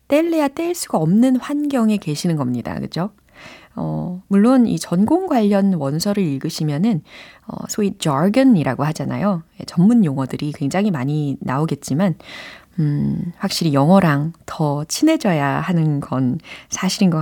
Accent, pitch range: native, 155-245 Hz